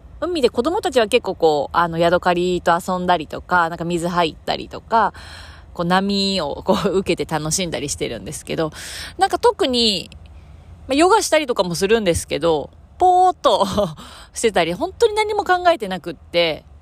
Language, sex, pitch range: Japanese, female, 155-230 Hz